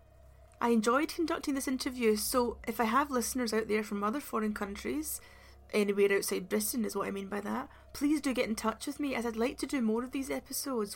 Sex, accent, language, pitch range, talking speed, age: female, British, English, 210-245 Hz, 225 wpm, 30-49